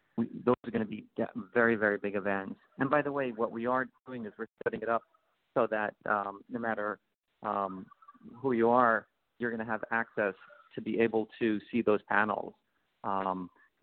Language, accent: English, American